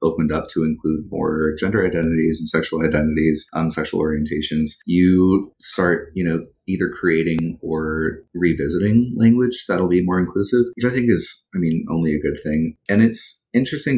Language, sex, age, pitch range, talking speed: English, male, 30-49, 80-90 Hz, 170 wpm